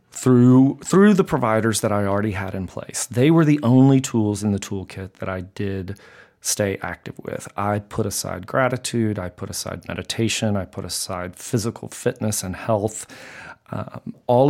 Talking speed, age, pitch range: 170 wpm, 40-59, 95-120 Hz